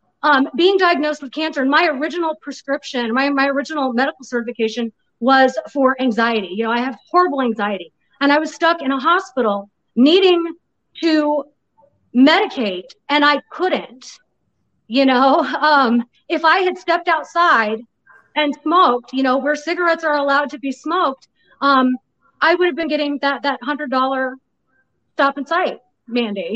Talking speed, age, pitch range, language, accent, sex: 155 wpm, 30-49, 265-335 Hz, English, American, female